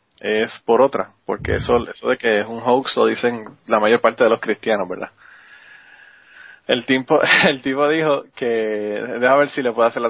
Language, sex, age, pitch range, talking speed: Spanish, male, 20-39, 110-135 Hz, 195 wpm